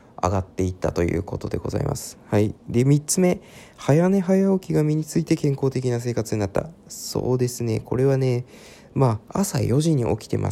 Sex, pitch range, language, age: male, 105-145 Hz, Japanese, 20-39